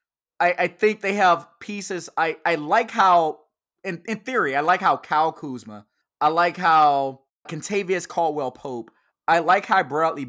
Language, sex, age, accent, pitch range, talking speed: English, male, 20-39, American, 150-195 Hz, 150 wpm